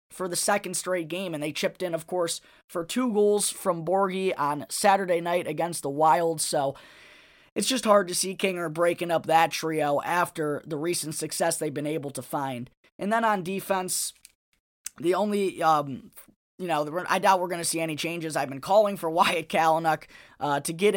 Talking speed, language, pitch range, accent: 195 wpm, English, 150-180 Hz, American